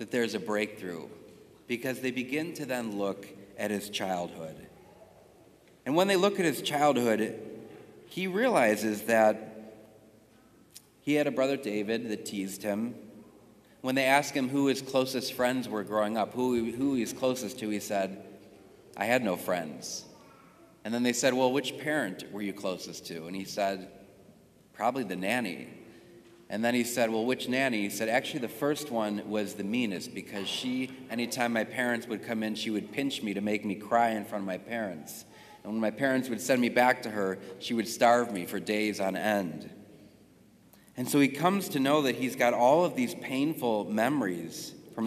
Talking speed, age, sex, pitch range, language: 185 wpm, 40-59, male, 105-130 Hz, English